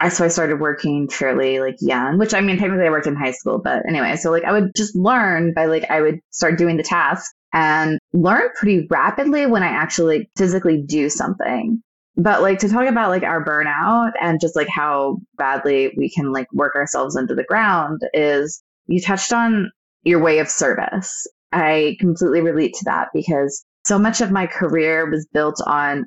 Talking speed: 195 wpm